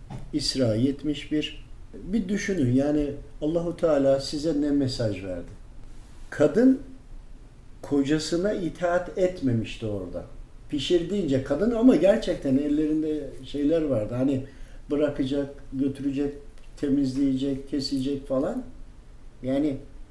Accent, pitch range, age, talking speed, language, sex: native, 120-150 Hz, 50-69, 90 wpm, Turkish, male